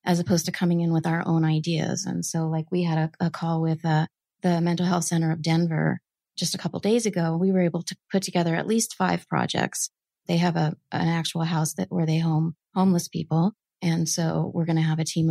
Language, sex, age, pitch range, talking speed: English, female, 30-49, 165-185 Hz, 240 wpm